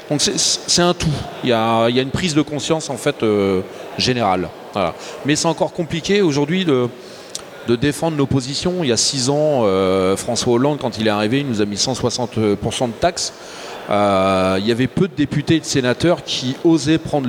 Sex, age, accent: male, 30-49, French